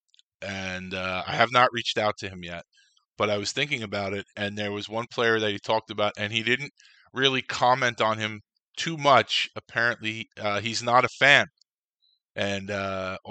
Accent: American